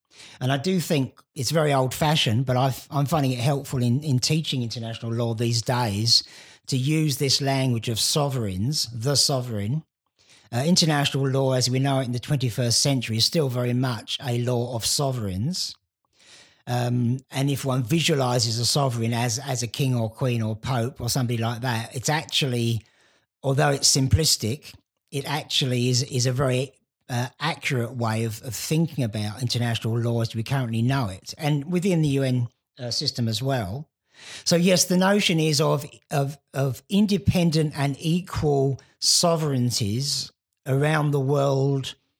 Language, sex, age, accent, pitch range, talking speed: English, male, 50-69, British, 120-145 Hz, 160 wpm